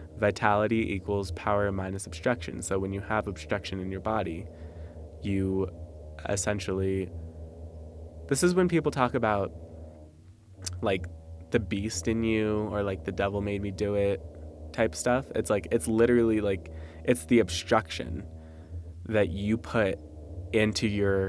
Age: 20-39